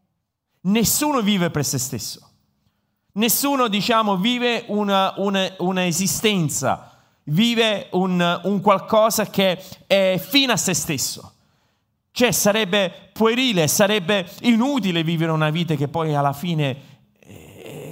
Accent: native